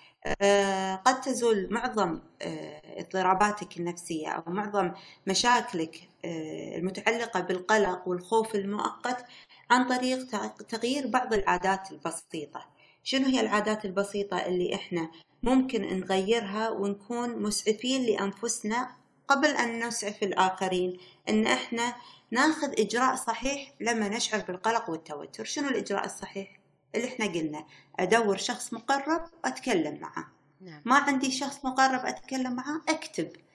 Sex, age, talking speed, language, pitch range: female, 30-49, 105 wpm, Arabic, 190-245 Hz